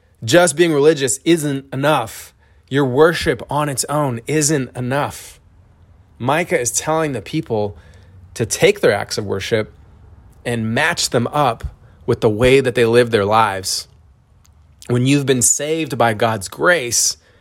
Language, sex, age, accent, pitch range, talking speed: English, male, 20-39, American, 100-135 Hz, 145 wpm